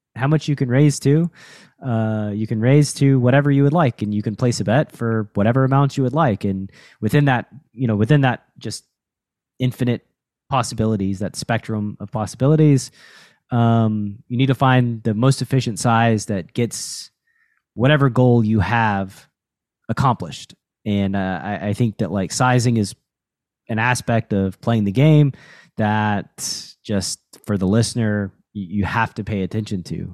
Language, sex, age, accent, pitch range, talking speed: English, male, 20-39, American, 100-125 Hz, 165 wpm